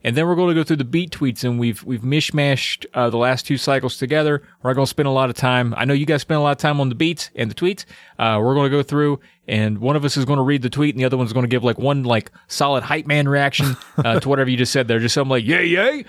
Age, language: 30-49, English